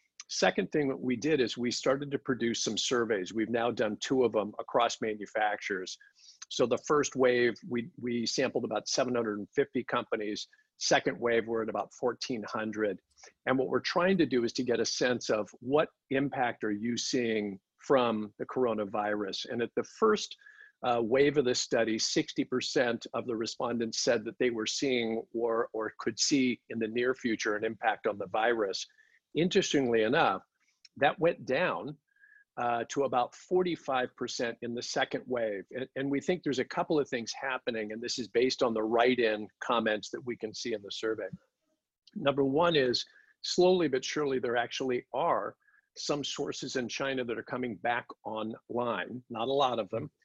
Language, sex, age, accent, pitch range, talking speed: English, male, 50-69, American, 115-145 Hz, 180 wpm